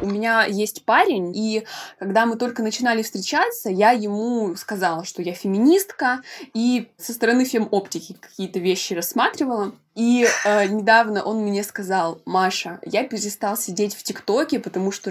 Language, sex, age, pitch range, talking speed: Russian, female, 20-39, 195-235 Hz, 145 wpm